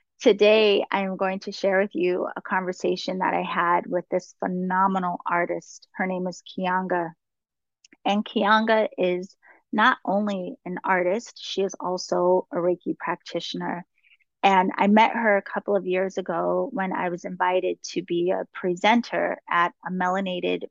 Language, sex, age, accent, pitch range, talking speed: English, female, 30-49, American, 180-200 Hz, 155 wpm